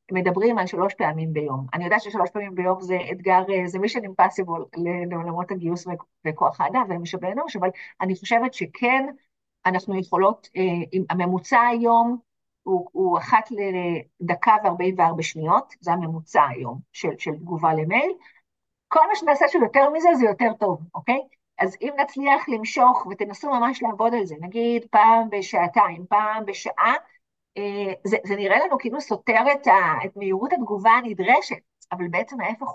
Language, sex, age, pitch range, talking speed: Hebrew, female, 50-69, 185-235 Hz, 145 wpm